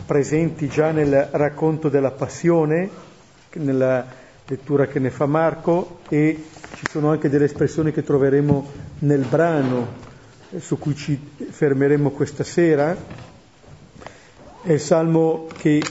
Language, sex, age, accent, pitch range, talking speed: Italian, male, 40-59, native, 140-175 Hz, 125 wpm